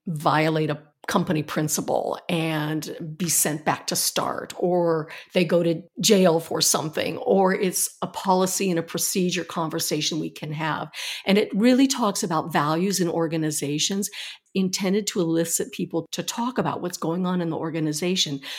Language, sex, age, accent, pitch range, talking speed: English, female, 50-69, American, 165-200 Hz, 160 wpm